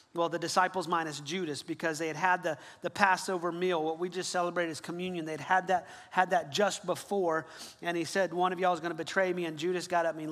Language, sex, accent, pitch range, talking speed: English, male, American, 175-210 Hz, 245 wpm